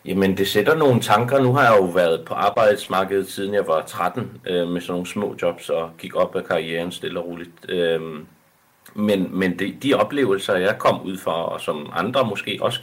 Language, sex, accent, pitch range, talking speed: Danish, male, native, 90-120 Hz, 210 wpm